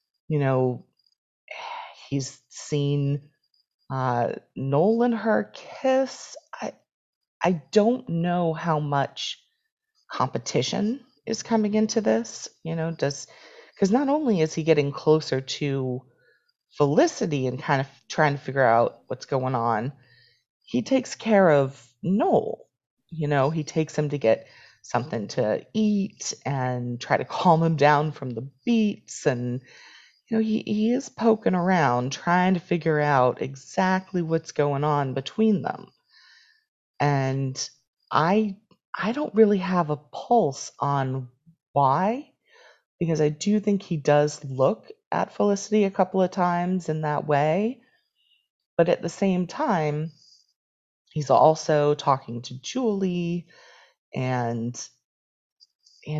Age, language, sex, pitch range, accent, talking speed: 30-49, English, female, 135-210 Hz, American, 130 wpm